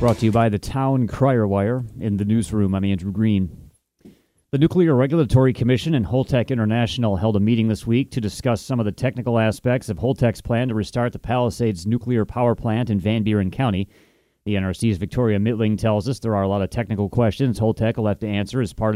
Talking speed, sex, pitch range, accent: 210 wpm, male, 105-120 Hz, American